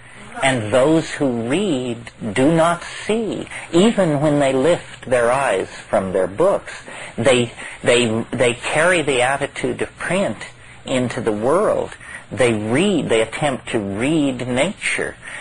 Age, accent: 50-69, American